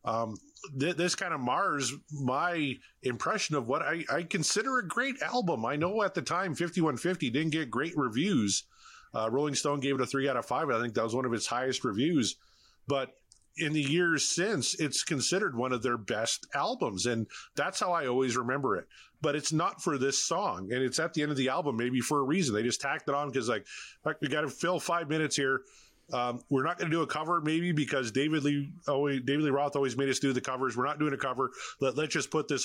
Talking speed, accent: 240 wpm, American